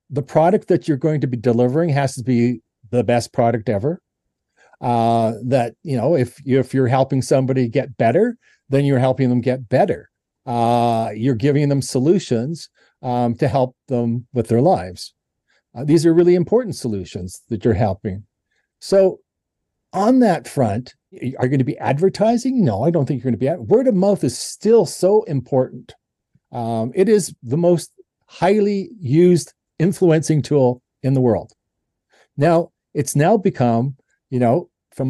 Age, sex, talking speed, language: 50-69, male, 170 wpm, English